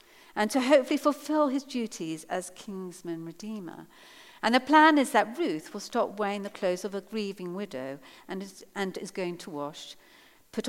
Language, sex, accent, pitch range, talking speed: English, female, British, 175-255 Hz, 170 wpm